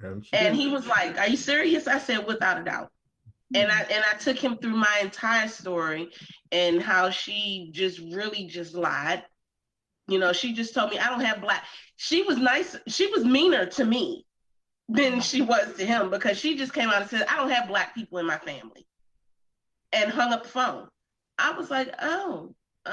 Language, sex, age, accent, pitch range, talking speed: English, female, 30-49, American, 220-315 Hz, 200 wpm